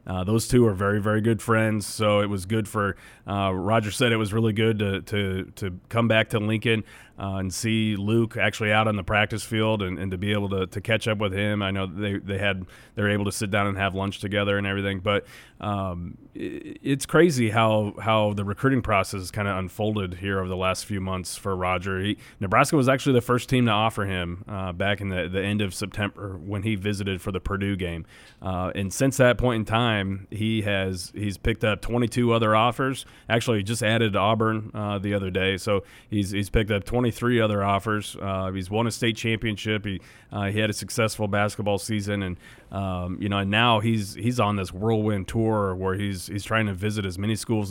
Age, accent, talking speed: 30-49, American, 225 wpm